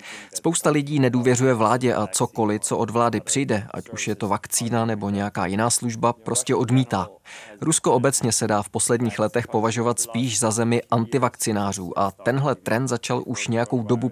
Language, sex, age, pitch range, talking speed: Czech, male, 20-39, 110-130 Hz, 170 wpm